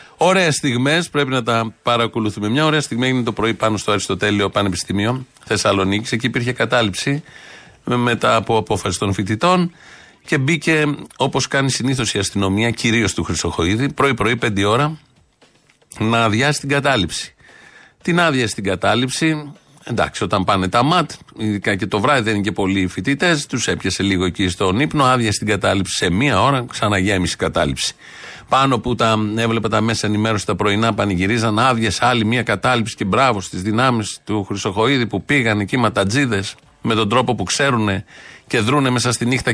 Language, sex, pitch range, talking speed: Greek, male, 105-140 Hz, 165 wpm